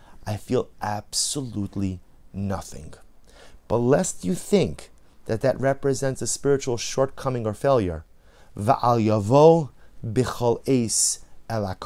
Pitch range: 95-135 Hz